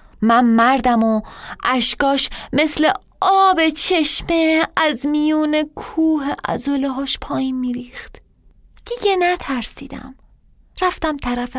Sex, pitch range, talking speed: female, 230-305 Hz, 90 wpm